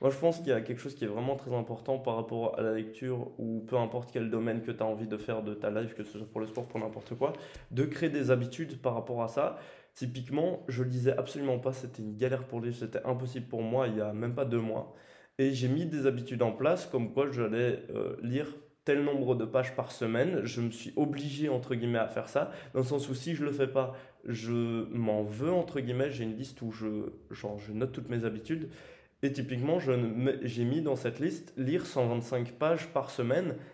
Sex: male